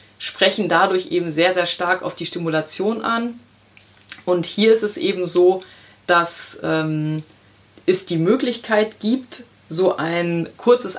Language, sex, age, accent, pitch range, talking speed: German, female, 30-49, German, 165-220 Hz, 135 wpm